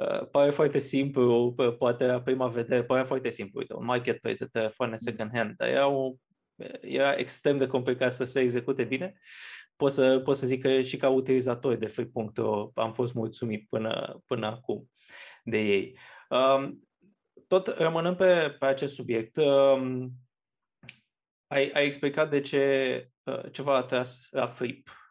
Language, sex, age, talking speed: Romanian, male, 20-39, 165 wpm